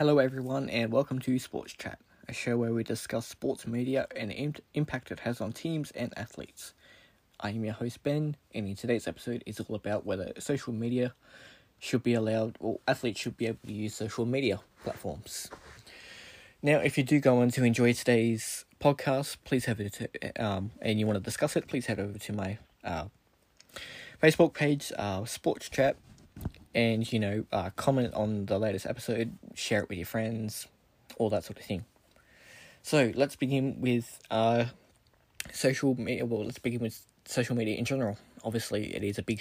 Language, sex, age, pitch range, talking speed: English, male, 20-39, 105-125 Hz, 185 wpm